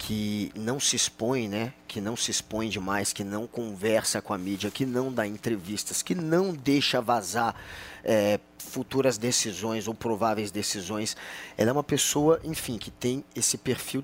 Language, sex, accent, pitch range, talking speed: Portuguese, male, Brazilian, 110-165 Hz, 165 wpm